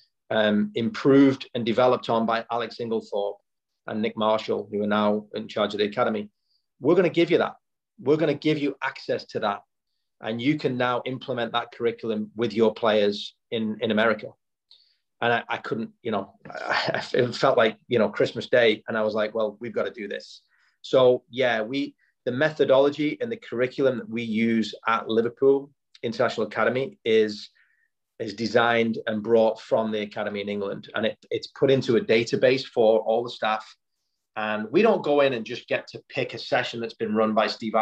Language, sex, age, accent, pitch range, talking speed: English, male, 30-49, British, 105-125 Hz, 195 wpm